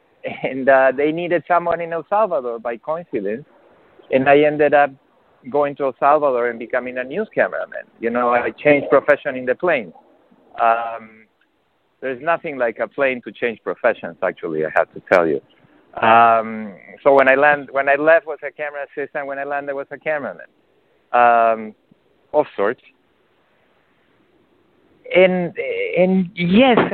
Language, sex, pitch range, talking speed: English, male, 120-170 Hz, 155 wpm